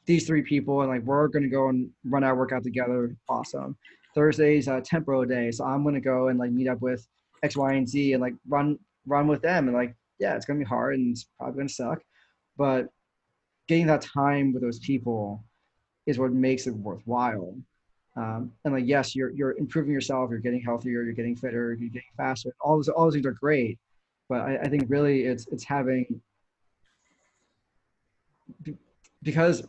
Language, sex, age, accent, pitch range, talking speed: English, male, 20-39, American, 120-140 Hz, 195 wpm